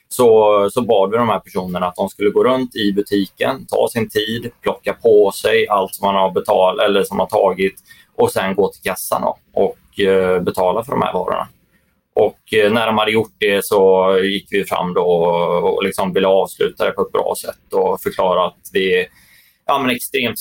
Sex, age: male, 20-39